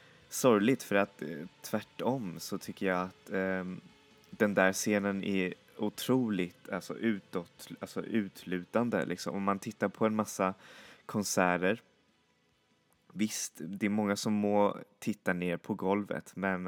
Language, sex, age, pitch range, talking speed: Swedish, male, 20-39, 90-105 Hz, 135 wpm